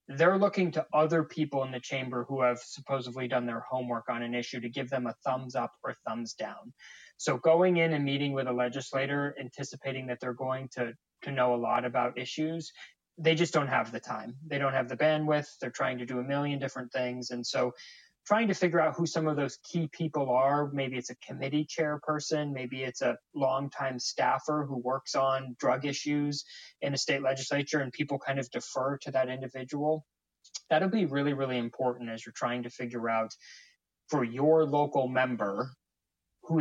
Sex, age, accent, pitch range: male, 20-39, American, 125-150 Hz